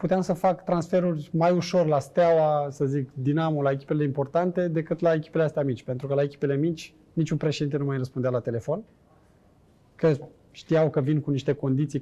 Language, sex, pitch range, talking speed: Romanian, male, 140-180 Hz, 190 wpm